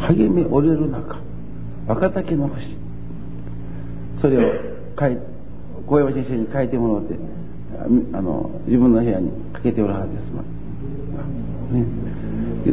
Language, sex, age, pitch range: Japanese, male, 50-69, 115-165 Hz